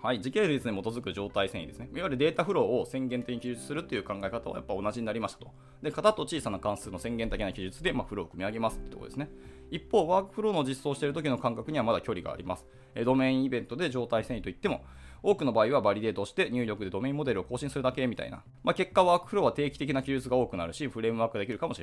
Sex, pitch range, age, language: male, 95-135 Hz, 20-39, Japanese